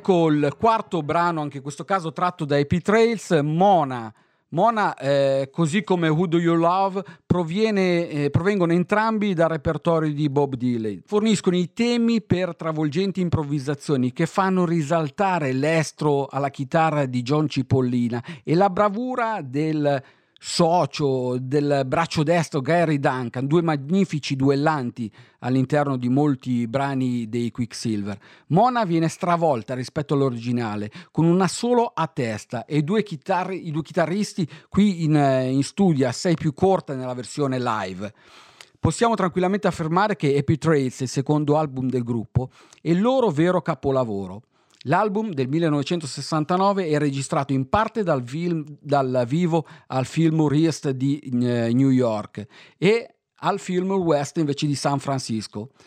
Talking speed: 135 wpm